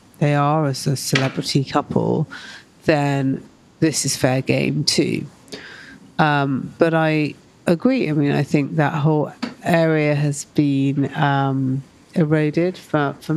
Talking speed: 130 wpm